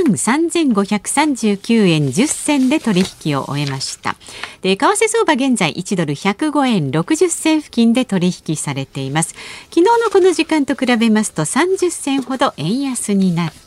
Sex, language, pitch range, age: female, Japanese, 180-285 Hz, 50-69